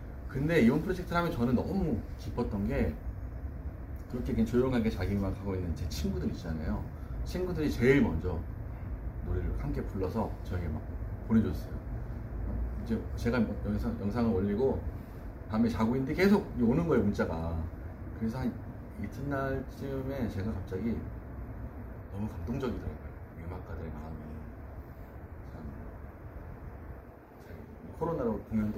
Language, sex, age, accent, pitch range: Korean, male, 30-49, native, 85-110 Hz